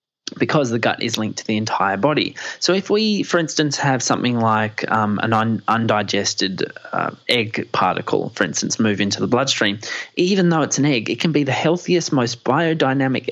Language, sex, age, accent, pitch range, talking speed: English, male, 20-39, Australian, 110-140 Hz, 185 wpm